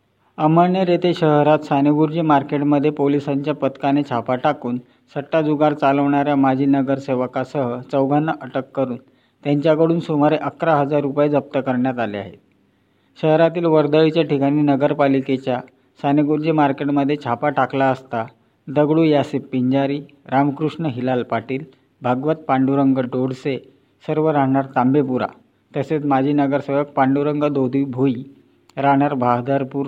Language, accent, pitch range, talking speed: Marathi, native, 130-150 Hz, 110 wpm